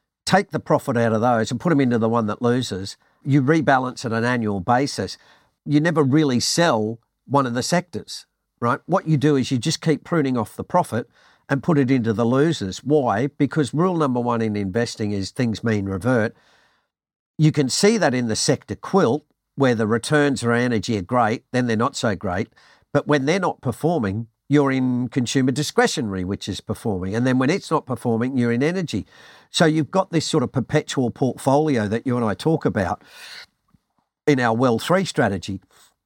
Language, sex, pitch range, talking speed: English, male, 115-150 Hz, 195 wpm